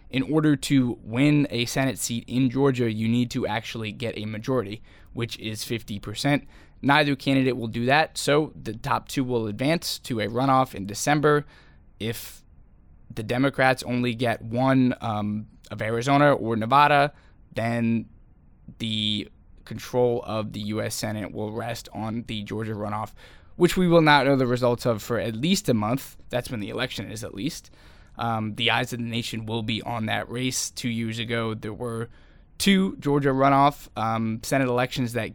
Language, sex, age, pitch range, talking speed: English, male, 10-29, 110-130 Hz, 175 wpm